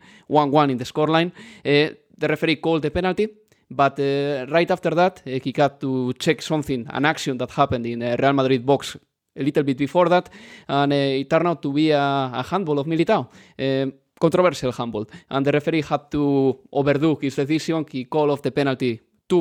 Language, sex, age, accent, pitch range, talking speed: English, male, 20-39, Spanish, 130-155 Hz, 200 wpm